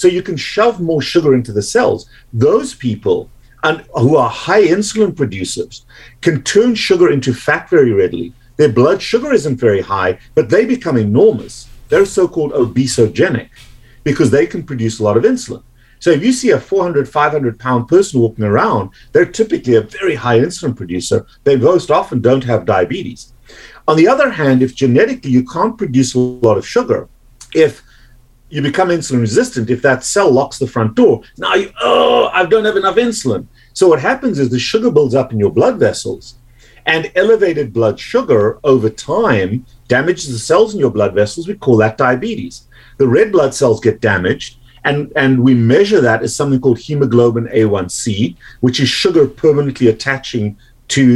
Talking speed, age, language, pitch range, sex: 175 wpm, 50-69, English, 120-170 Hz, male